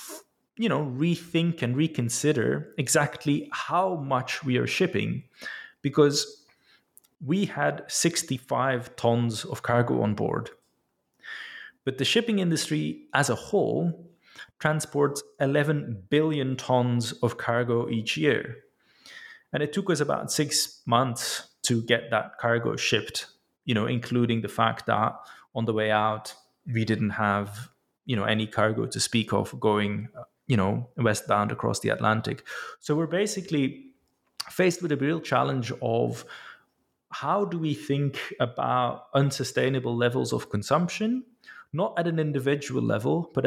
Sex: male